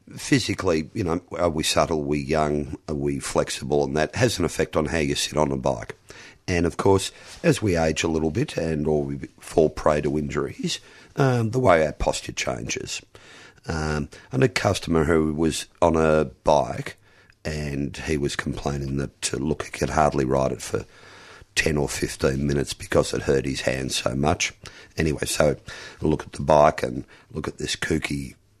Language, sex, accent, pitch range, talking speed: English, male, Australian, 70-80 Hz, 190 wpm